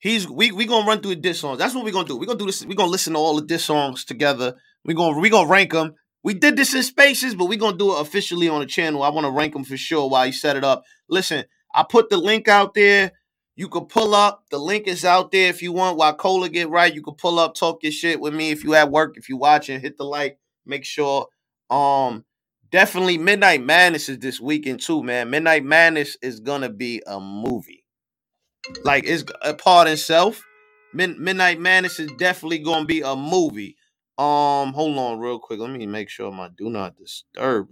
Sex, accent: male, American